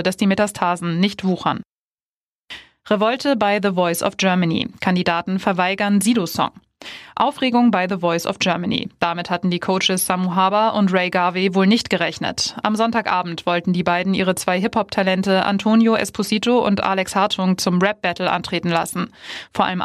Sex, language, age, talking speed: female, German, 20-39, 155 wpm